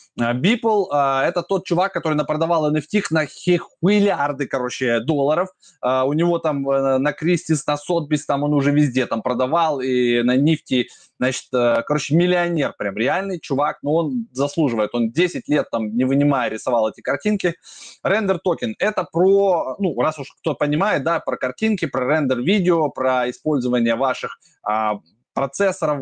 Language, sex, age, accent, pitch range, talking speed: Russian, male, 20-39, native, 135-180 Hz, 165 wpm